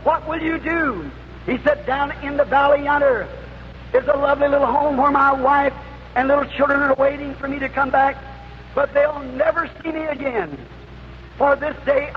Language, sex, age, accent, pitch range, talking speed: English, male, 50-69, American, 275-295 Hz, 185 wpm